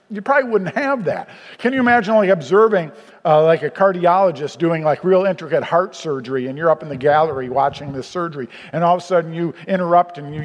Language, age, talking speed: English, 50-69, 225 wpm